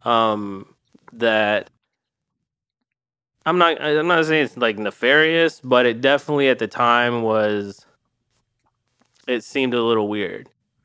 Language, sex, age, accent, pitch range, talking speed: English, male, 20-39, American, 115-135 Hz, 120 wpm